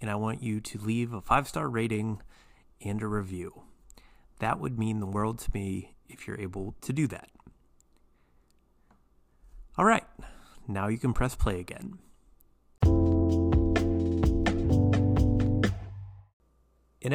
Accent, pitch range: American, 85-120 Hz